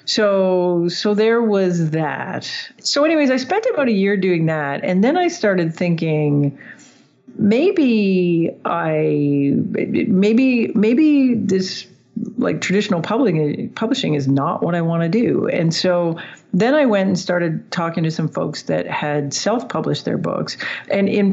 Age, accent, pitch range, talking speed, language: 50-69, American, 160-215 Hz, 145 wpm, English